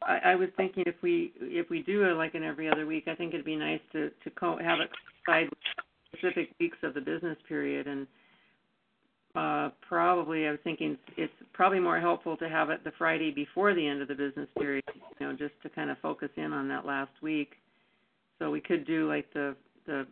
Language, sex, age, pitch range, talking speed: English, female, 50-69, 150-180 Hz, 210 wpm